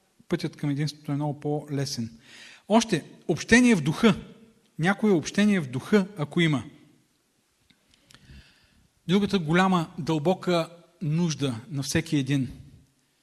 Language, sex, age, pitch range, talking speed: Bulgarian, male, 40-59, 140-175 Hz, 105 wpm